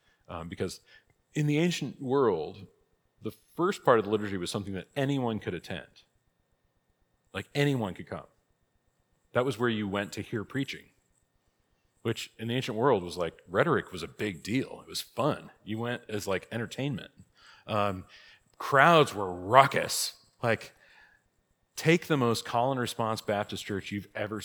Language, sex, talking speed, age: English, male, 160 wpm, 40-59